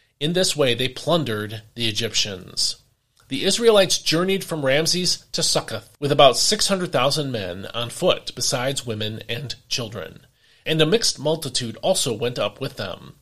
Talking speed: 150 wpm